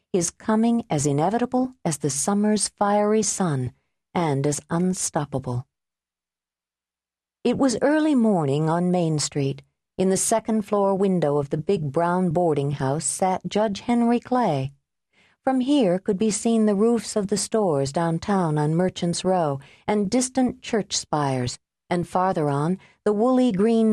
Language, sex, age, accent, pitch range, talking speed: English, female, 50-69, American, 145-210 Hz, 145 wpm